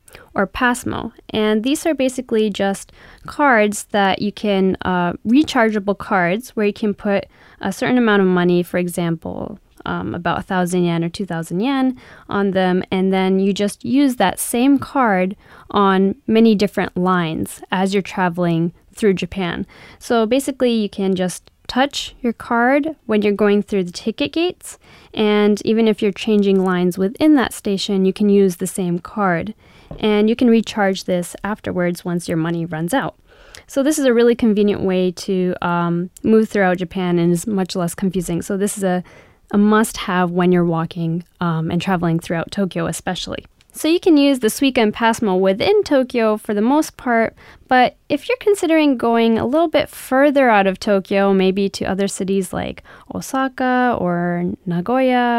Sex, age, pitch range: female, 10-29, 185-235 Hz